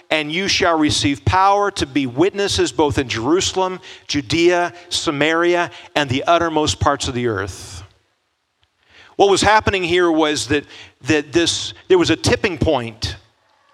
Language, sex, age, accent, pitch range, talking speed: English, male, 40-59, American, 125-175 Hz, 145 wpm